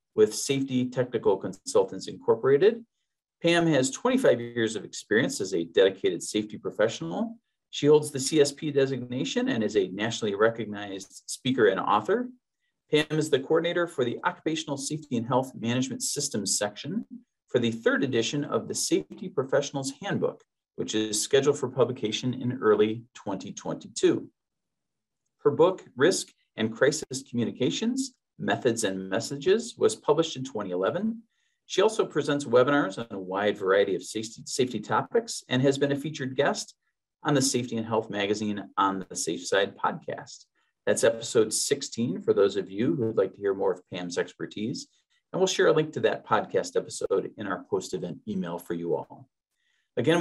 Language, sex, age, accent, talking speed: English, male, 40-59, American, 160 wpm